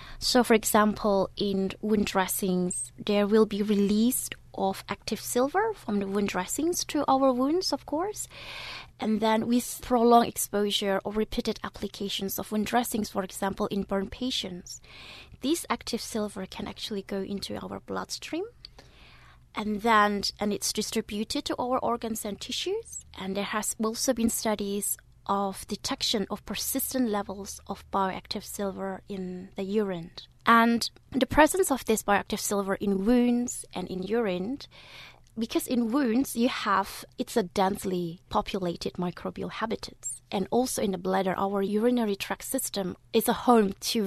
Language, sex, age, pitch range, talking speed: English, female, 20-39, 195-240 Hz, 150 wpm